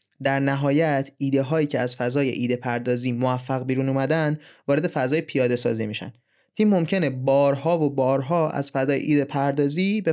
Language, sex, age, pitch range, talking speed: Persian, male, 30-49, 130-160 Hz, 160 wpm